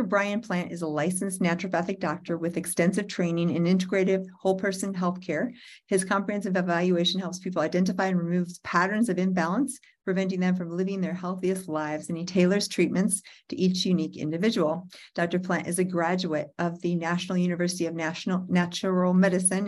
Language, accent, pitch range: English, American, 170-195 Hz